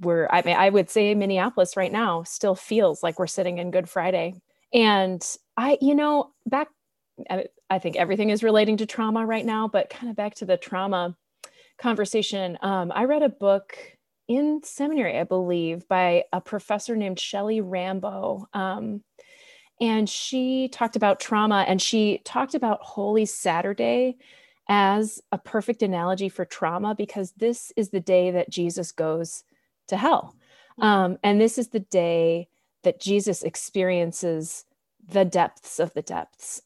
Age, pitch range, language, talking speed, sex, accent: 30-49, 185-240 Hz, English, 155 wpm, female, American